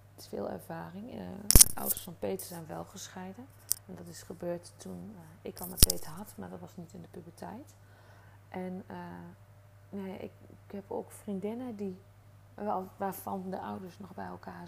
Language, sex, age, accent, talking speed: Dutch, female, 30-49, Dutch, 185 wpm